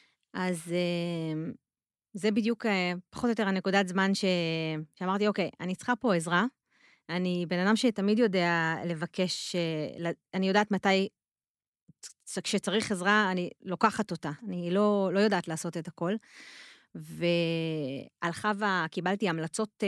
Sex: female